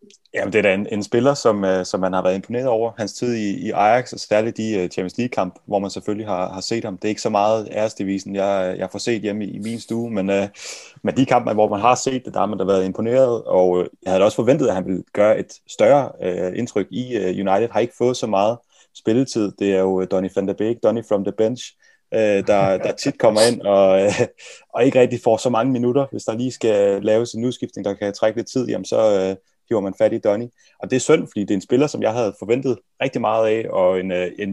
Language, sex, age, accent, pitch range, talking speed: Danish, male, 30-49, native, 95-115 Hz, 260 wpm